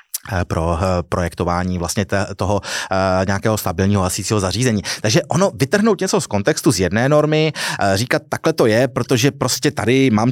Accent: native